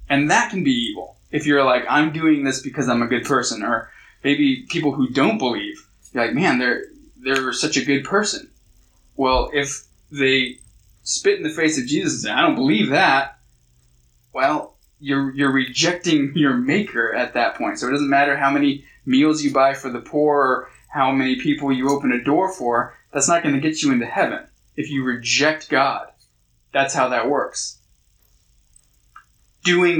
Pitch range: 125-155 Hz